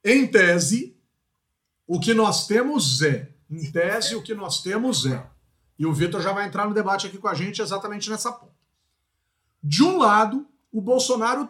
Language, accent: Portuguese, Brazilian